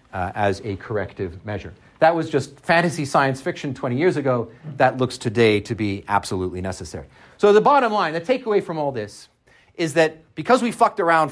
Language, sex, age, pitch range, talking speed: English, male, 40-59, 130-190 Hz, 190 wpm